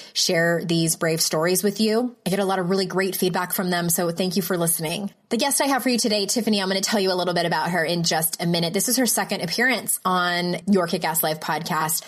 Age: 20-39